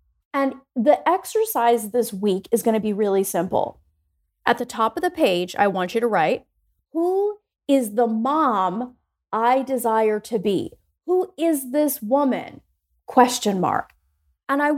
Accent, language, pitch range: American, English, 230-310 Hz